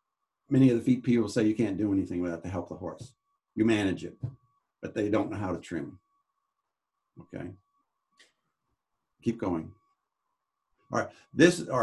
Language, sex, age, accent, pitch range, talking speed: English, male, 60-79, American, 110-145 Hz, 165 wpm